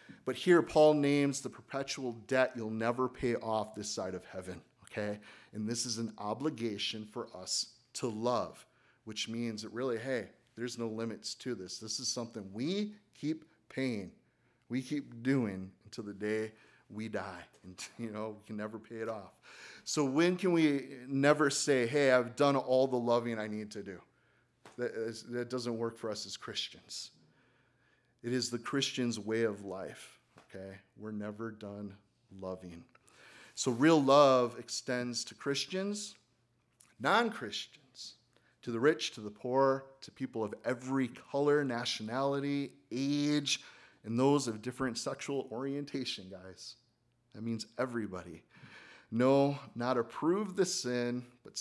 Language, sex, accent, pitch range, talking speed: English, male, American, 110-135 Hz, 150 wpm